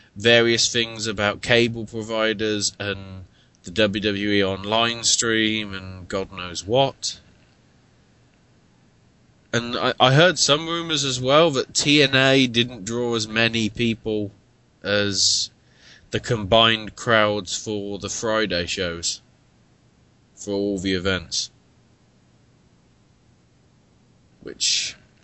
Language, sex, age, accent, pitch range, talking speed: English, male, 20-39, British, 95-120 Hz, 100 wpm